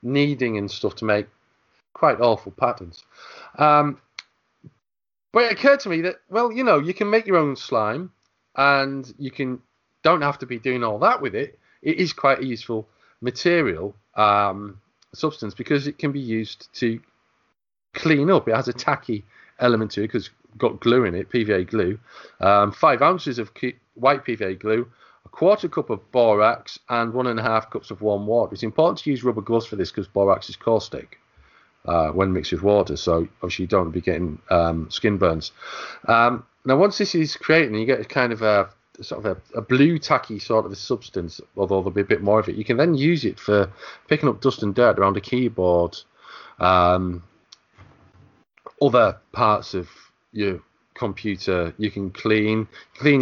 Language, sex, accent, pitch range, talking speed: English, male, British, 105-140 Hz, 190 wpm